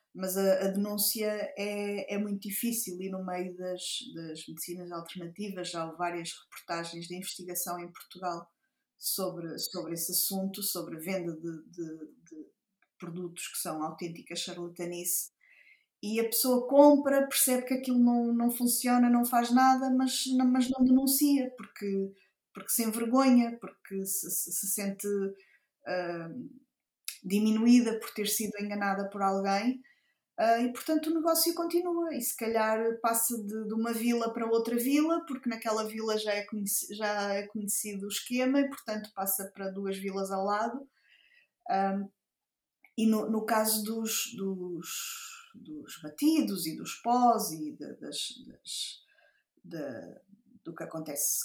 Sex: female